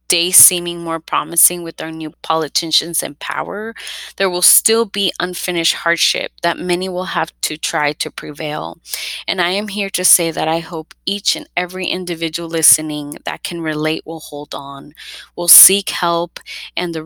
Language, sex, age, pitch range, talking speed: English, female, 20-39, 155-185 Hz, 170 wpm